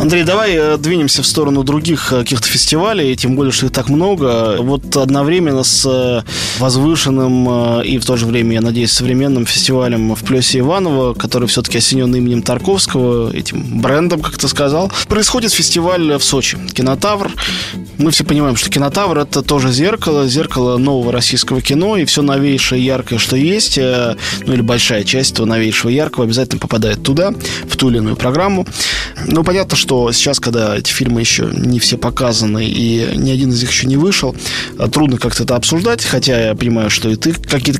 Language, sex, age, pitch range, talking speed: Russian, male, 20-39, 120-150 Hz, 180 wpm